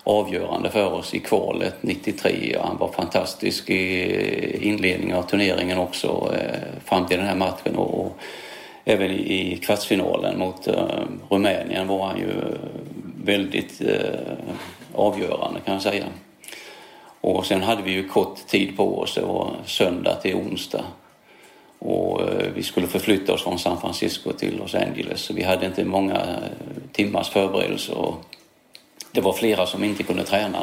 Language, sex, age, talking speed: English, male, 40-59, 145 wpm